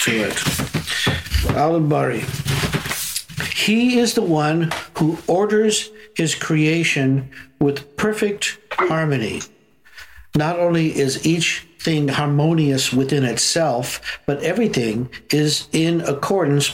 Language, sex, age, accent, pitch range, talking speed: English, male, 60-79, American, 140-185 Hz, 95 wpm